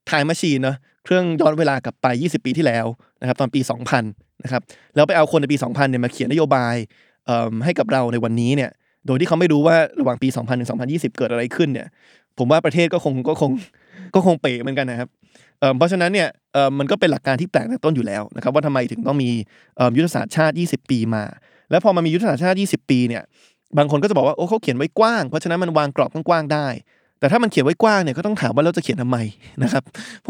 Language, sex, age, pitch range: Thai, male, 20-39, 130-170 Hz